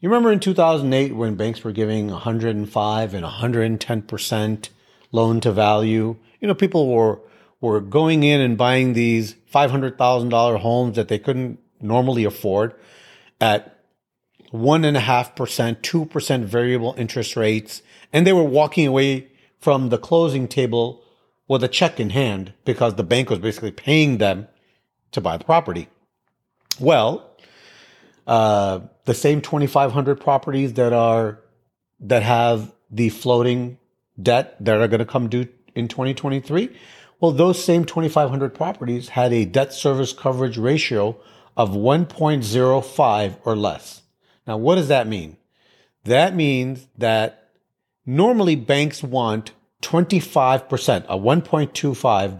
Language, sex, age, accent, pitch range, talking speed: English, male, 40-59, American, 115-145 Hz, 125 wpm